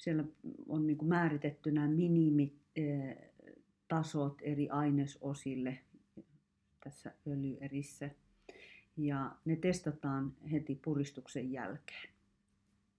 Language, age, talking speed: Finnish, 40-59, 80 wpm